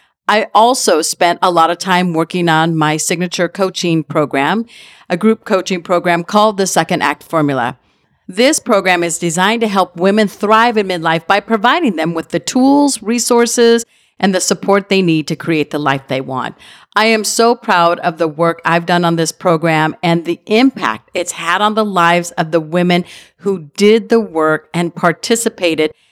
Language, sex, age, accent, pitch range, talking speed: English, female, 50-69, American, 170-215 Hz, 180 wpm